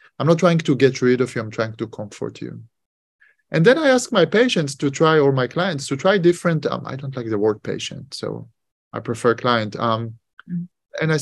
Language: English